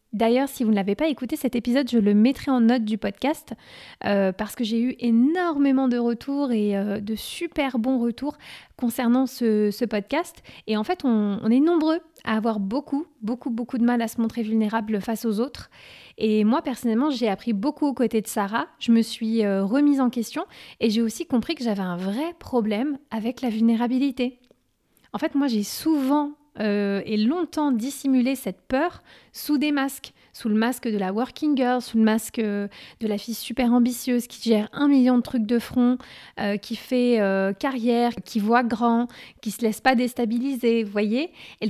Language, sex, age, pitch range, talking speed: French, female, 20-39, 220-270 Hz, 200 wpm